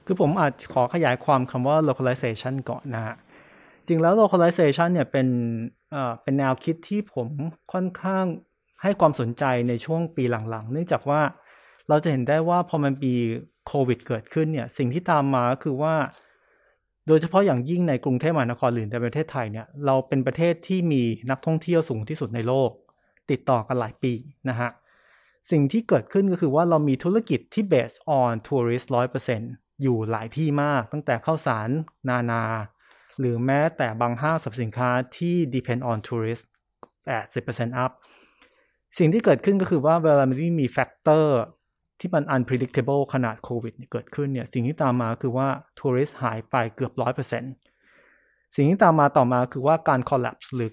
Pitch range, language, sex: 125-155 Hz, Thai, male